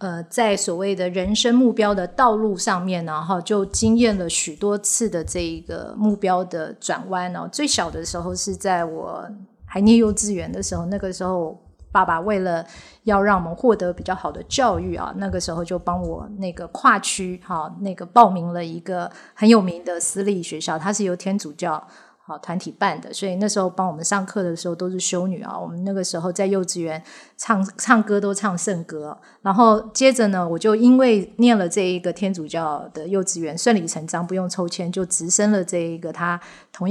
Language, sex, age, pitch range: Chinese, female, 30-49, 175-205 Hz